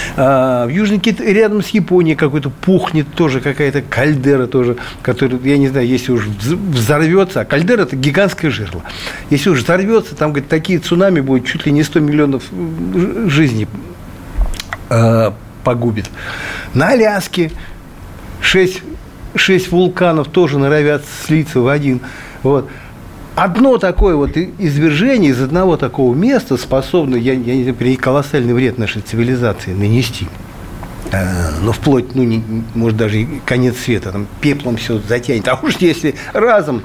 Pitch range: 115-165 Hz